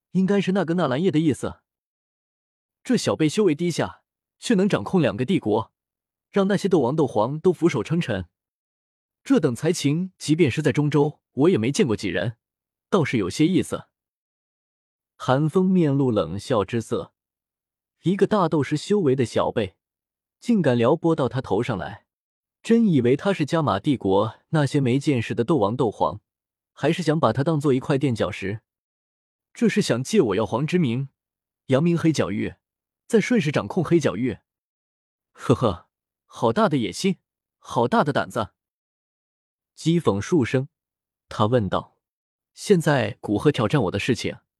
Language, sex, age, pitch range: Chinese, male, 20-39, 115-170 Hz